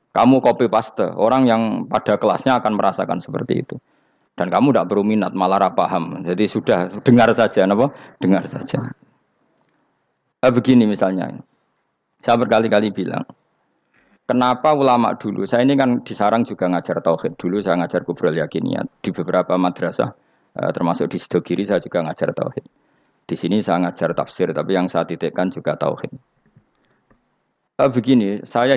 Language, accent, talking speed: Indonesian, native, 140 wpm